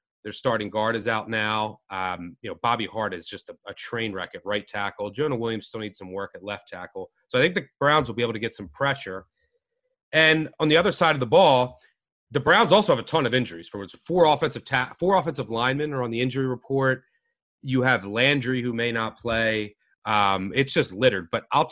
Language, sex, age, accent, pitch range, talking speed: English, male, 30-49, American, 115-165 Hz, 225 wpm